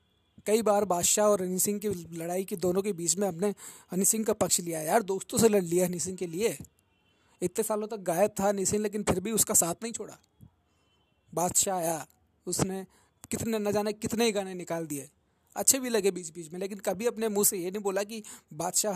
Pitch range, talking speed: 170-215 Hz, 220 wpm